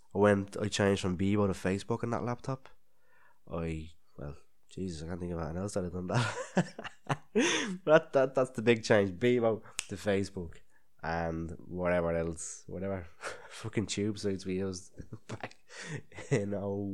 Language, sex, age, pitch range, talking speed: English, male, 20-39, 90-115 Hz, 160 wpm